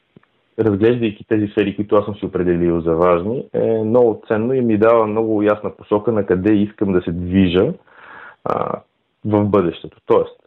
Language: Bulgarian